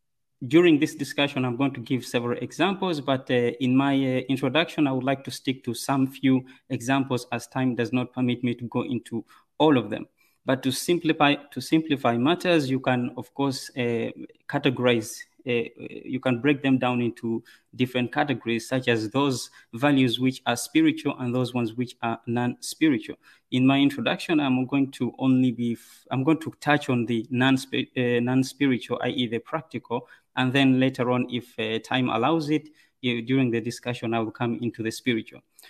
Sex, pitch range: male, 120-140 Hz